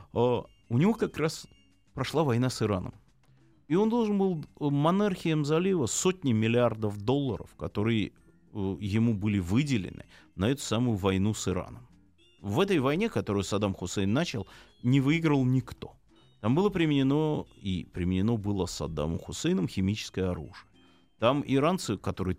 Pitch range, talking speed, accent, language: 95-135 Hz, 135 wpm, native, Russian